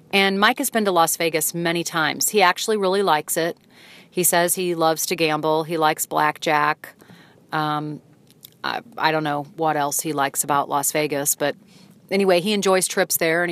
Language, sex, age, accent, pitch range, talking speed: English, female, 40-59, American, 155-195 Hz, 185 wpm